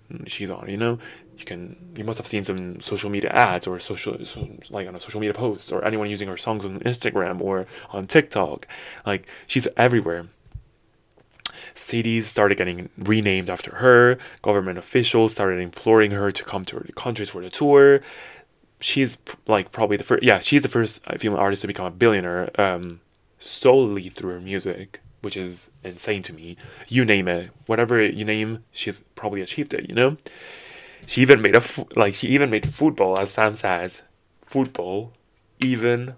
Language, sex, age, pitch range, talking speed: English, male, 20-39, 95-120 Hz, 175 wpm